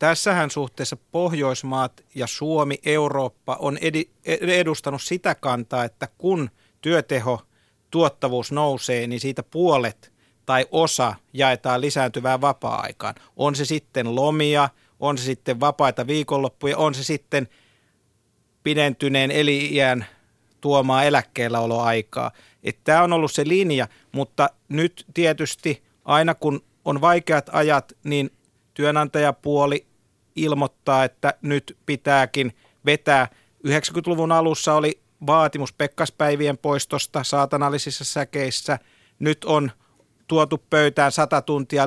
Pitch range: 130-150 Hz